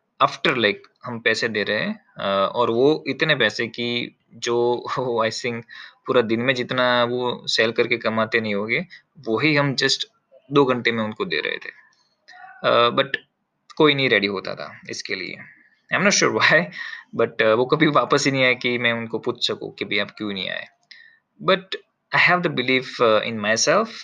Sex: male